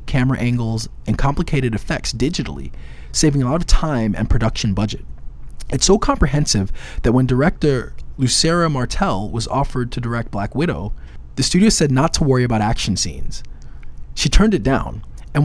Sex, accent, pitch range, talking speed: male, American, 95-145 Hz, 165 wpm